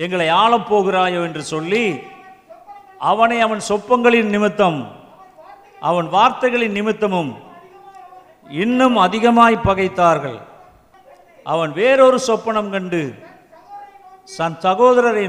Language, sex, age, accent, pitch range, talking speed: Tamil, male, 50-69, native, 175-245 Hz, 80 wpm